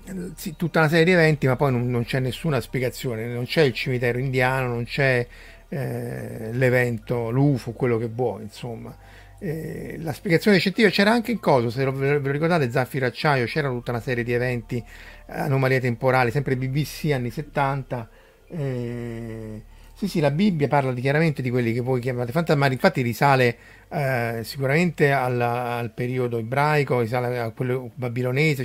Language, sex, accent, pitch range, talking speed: Italian, male, native, 120-155 Hz, 170 wpm